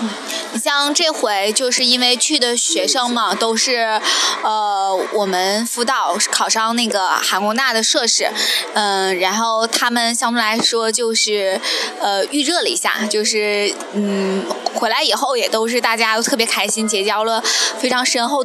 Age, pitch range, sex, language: 20-39, 210-255 Hz, female, Chinese